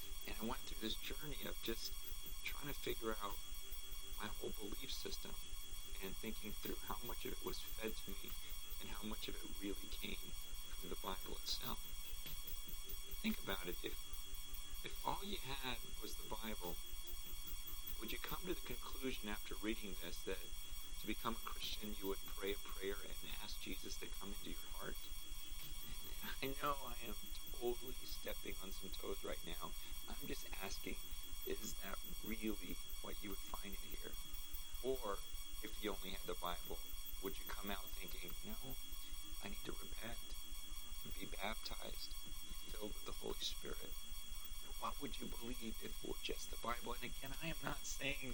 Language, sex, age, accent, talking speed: English, male, 40-59, American, 175 wpm